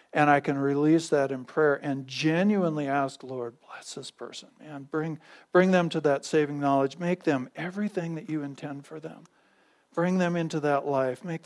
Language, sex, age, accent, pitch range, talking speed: English, male, 50-69, American, 145-180 Hz, 190 wpm